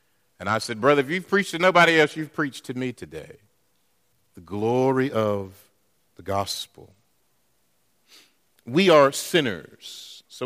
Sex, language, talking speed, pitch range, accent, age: male, English, 140 wpm, 110-170 Hz, American, 50-69